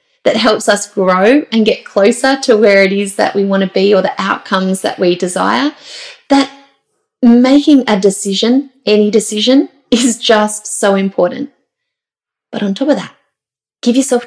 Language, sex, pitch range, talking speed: English, female, 195-260 Hz, 165 wpm